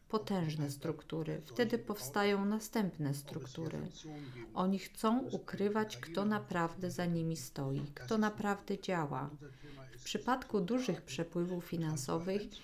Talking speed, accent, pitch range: 105 wpm, native, 160-205 Hz